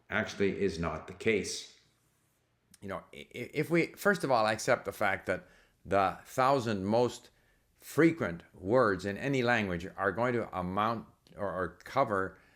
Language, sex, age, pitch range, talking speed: English, male, 50-69, 95-125 Hz, 150 wpm